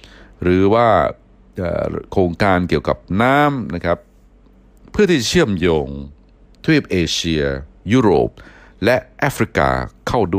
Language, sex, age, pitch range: Thai, male, 60-79, 70-90 Hz